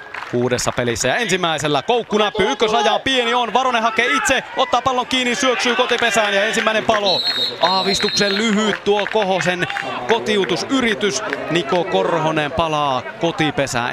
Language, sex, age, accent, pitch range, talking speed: Finnish, male, 30-49, native, 125-175 Hz, 125 wpm